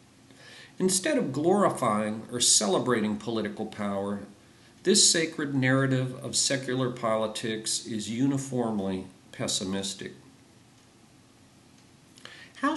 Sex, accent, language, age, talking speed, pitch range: male, American, English, 50-69, 80 wpm, 110-145 Hz